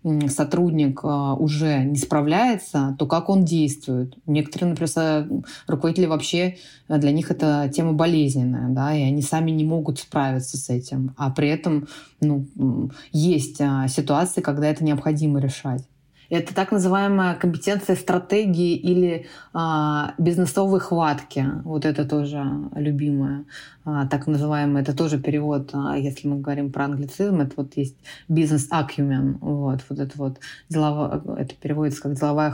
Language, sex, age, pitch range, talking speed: Russian, female, 20-39, 145-175 Hz, 135 wpm